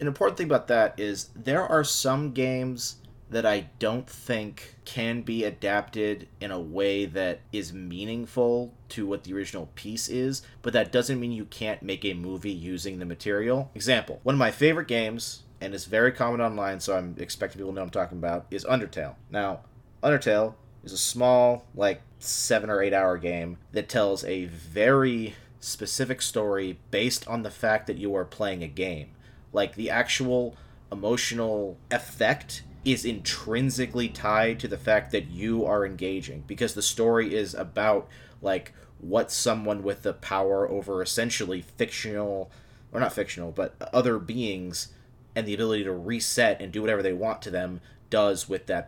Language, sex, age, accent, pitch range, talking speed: English, male, 30-49, American, 100-125 Hz, 175 wpm